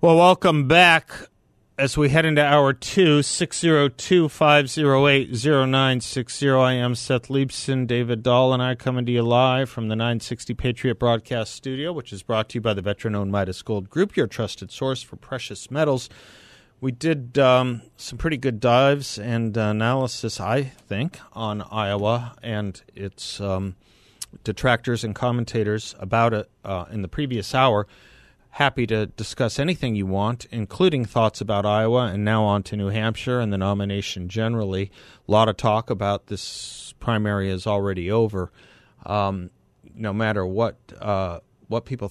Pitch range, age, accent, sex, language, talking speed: 105-130 Hz, 40-59, American, male, English, 170 wpm